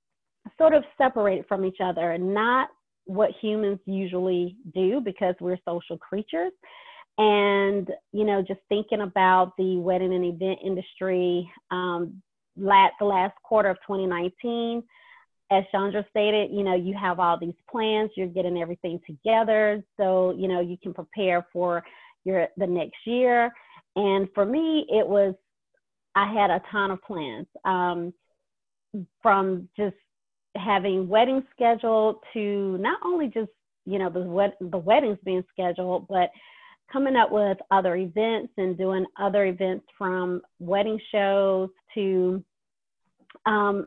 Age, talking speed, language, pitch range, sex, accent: 40-59, 140 wpm, English, 185-225 Hz, female, American